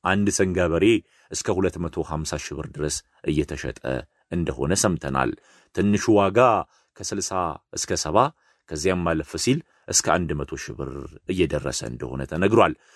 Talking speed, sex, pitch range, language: 95 wpm, male, 85-110 Hz, Amharic